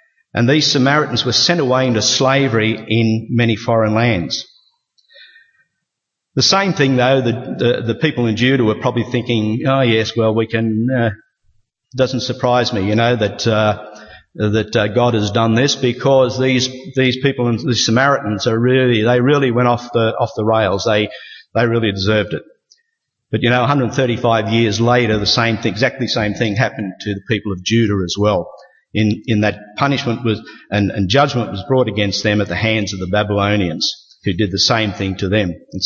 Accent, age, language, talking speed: Australian, 50-69, English, 185 wpm